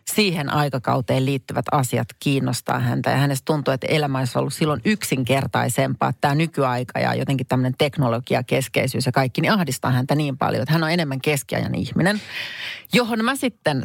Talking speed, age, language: 160 wpm, 30-49, Finnish